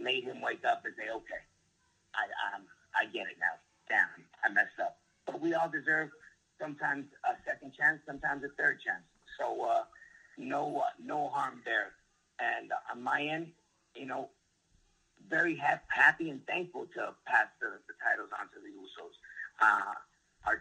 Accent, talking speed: American, 170 wpm